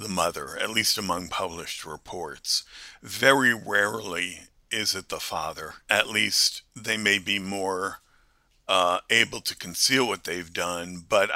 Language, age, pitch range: English, 50-69, 90-105 Hz